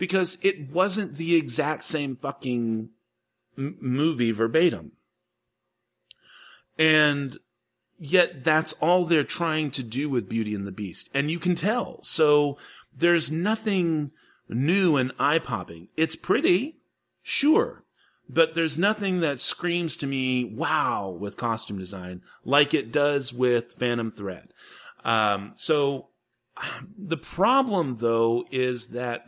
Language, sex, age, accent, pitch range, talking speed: English, male, 40-59, American, 110-155 Hz, 125 wpm